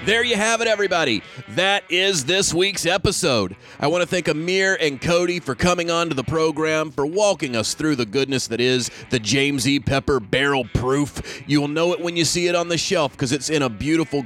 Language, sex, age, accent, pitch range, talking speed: English, male, 30-49, American, 135-160 Hz, 225 wpm